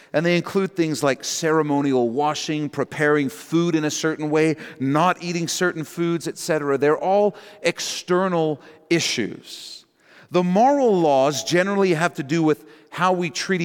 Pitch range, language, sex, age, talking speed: 150-195 Hz, English, male, 40-59, 145 wpm